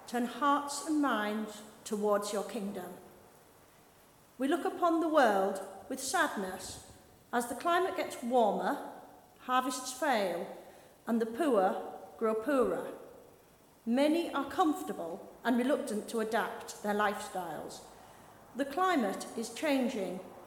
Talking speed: 115 wpm